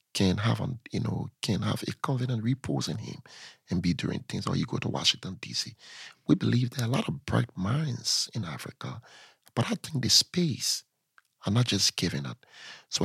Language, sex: English, male